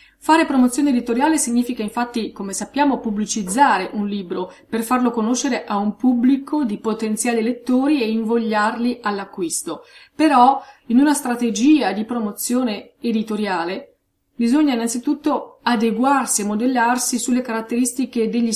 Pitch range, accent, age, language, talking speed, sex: 215-255 Hz, native, 30-49, Italian, 120 wpm, female